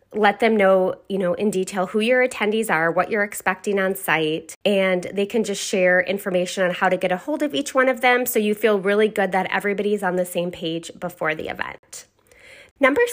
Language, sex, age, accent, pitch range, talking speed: English, female, 20-39, American, 185-245 Hz, 220 wpm